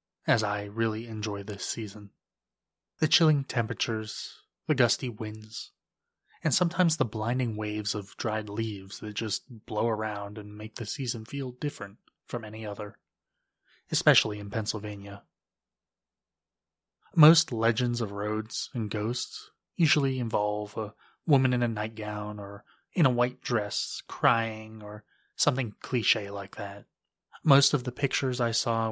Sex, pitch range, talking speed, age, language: male, 105-135 Hz, 135 wpm, 20-39, English